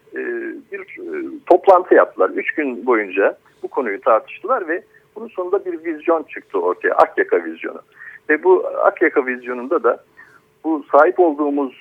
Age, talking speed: 60-79, 130 wpm